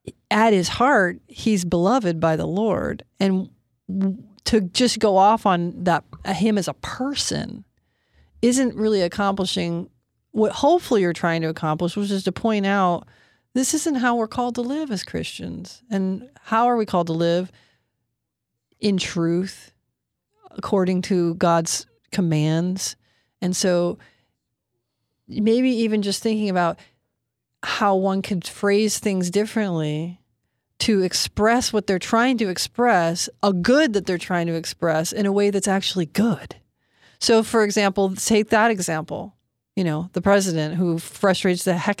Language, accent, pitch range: English, American, 170-215 Hz